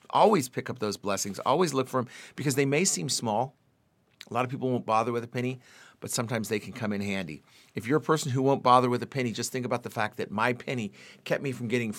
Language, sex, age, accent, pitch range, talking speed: English, male, 50-69, American, 100-125 Hz, 260 wpm